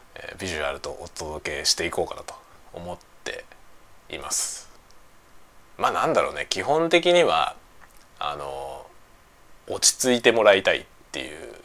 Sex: male